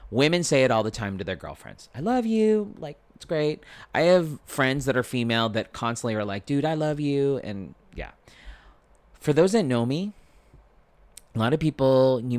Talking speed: 200 wpm